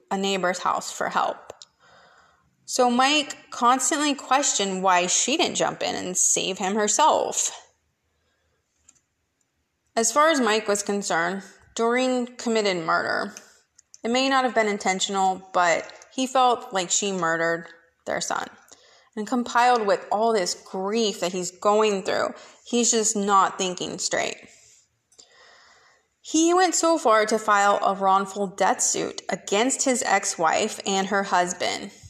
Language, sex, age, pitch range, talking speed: English, female, 20-39, 190-240 Hz, 135 wpm